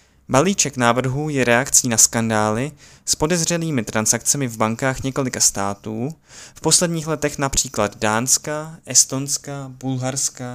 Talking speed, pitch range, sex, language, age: 115 wpm, 115-145 Hz, male, Czech, 20-39